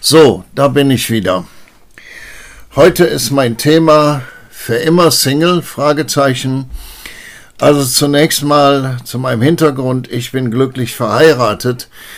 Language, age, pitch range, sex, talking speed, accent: German, 60-79, 120-145 Hz, male, 115 wpm, German